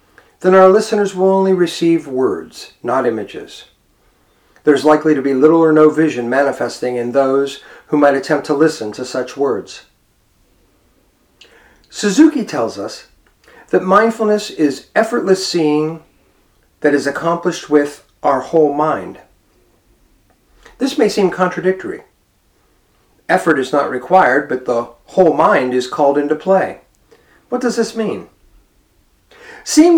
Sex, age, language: male, 50-69, English